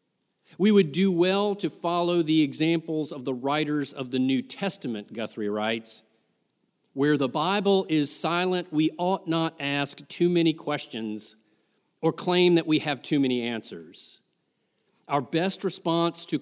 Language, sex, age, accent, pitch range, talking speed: English, male, 40-59, American, 135-175 Hz, 150 wpm